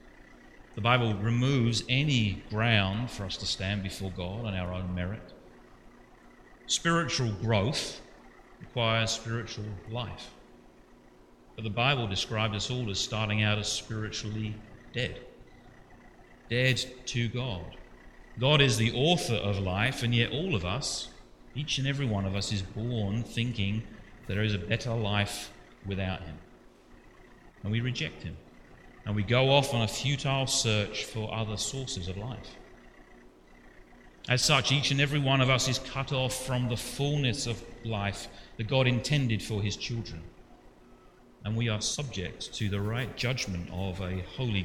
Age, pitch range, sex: 40-59, 100-125 Hz, male